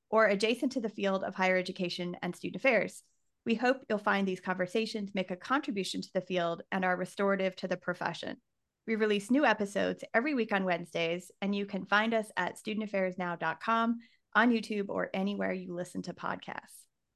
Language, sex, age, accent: English, female, 30-49, American